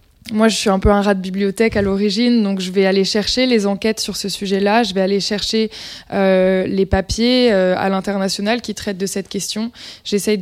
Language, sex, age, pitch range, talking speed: French, female, 20-39, 195-215 Hz, 215 wpm